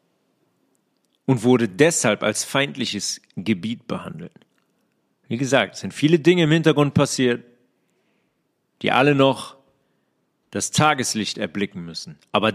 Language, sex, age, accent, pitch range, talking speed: German, male, 40-59, German, 115-155 Hz, 115 wpm